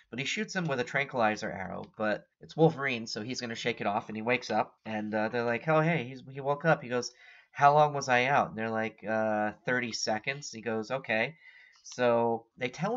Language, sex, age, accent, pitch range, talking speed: English, male, 30-49, American, 110-140 Hz, 230 wpm